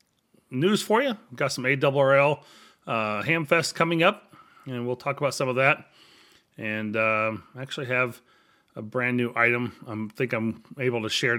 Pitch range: 115-145 Hz